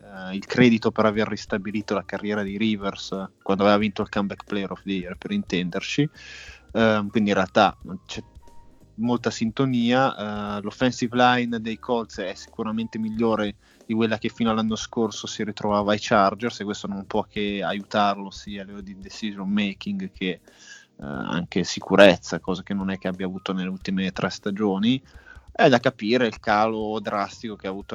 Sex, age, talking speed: male, 20-39, 175 wpm